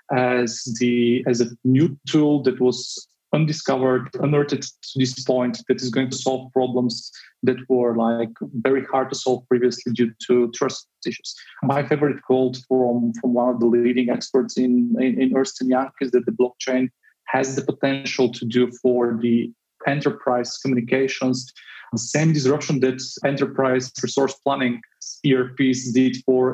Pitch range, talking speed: 125-140 Hz, 155 wpm